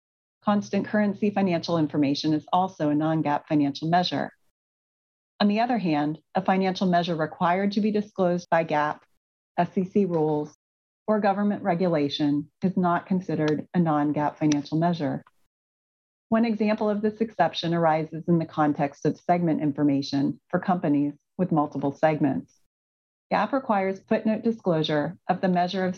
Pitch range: 150-190 Hz